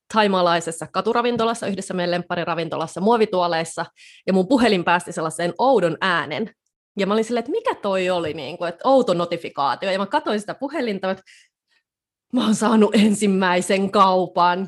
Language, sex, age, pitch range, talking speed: Finnish, female, 20-39, 170-225 Hz, 150 wpm